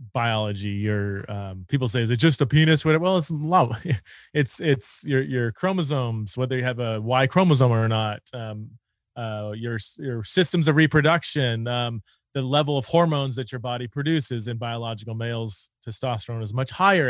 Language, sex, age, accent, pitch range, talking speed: English, male, 30-49, American, 115-155 Hz, 170 wpm